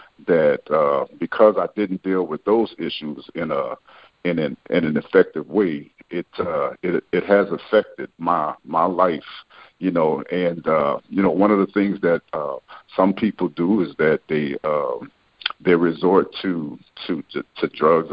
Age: 50-69